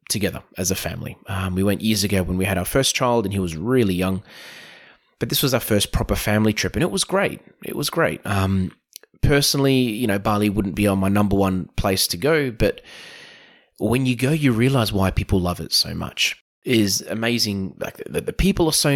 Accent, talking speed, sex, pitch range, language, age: Australian, 220 wpm, male, 95-135 Hz, English, 20-39